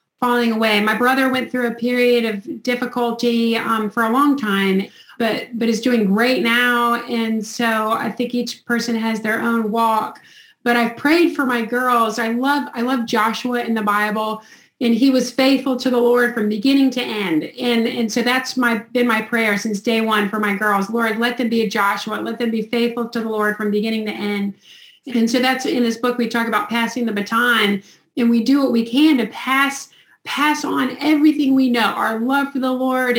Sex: female